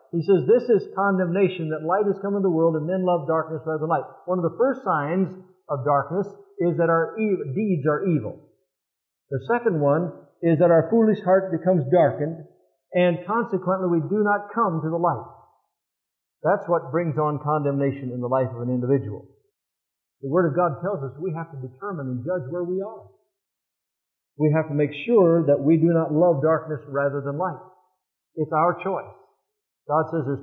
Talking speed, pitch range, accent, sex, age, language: 190 wpm, 150-190 Hz, American, male, 50-69, English